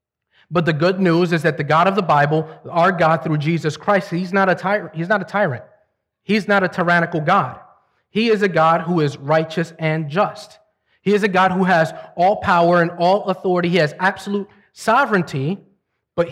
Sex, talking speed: male, 190 wpm